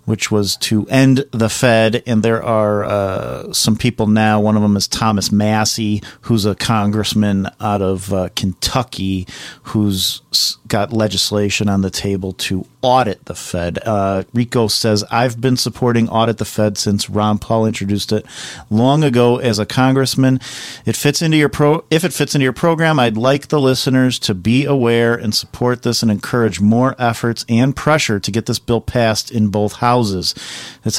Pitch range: 105-125 Hz